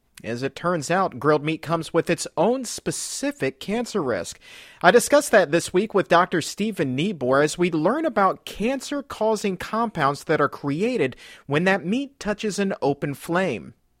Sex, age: male, 50-69